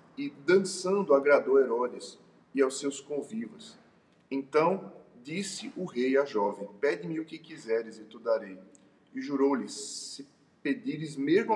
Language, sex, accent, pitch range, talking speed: Portuguese, male, Brazilian, 115-155 Hz, 135 wpm